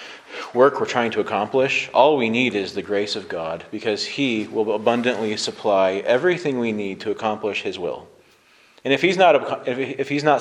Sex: male